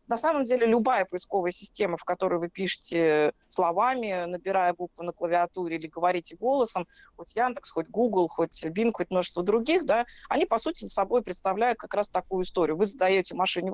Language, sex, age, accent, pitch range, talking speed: Russian, female, 20-39, native, 180-235 Hz, 175 wpm